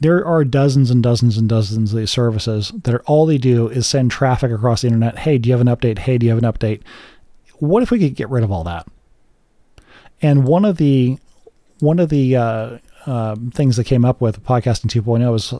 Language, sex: English, male